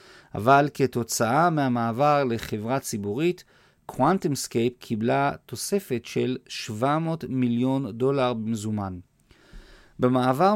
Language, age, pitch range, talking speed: Hebrew, 40-59, 115-145 Hz, 80 wpm